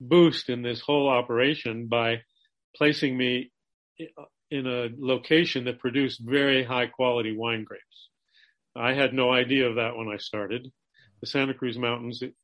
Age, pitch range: 40-59, 115-130 Hz